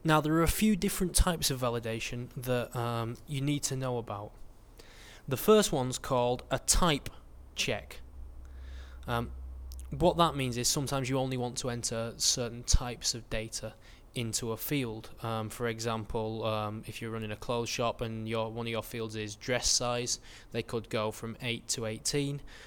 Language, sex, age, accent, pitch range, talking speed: English, male, 20-39, British, 110-125 Hz, 175 wpm